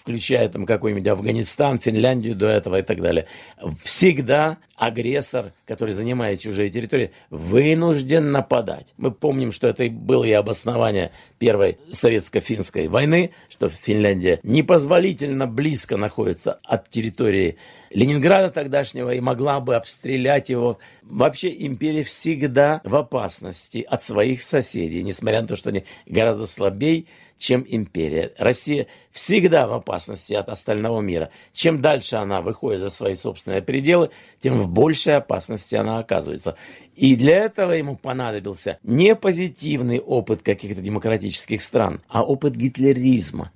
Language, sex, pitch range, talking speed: Russian, male, 110-150 Hz, 130 wpm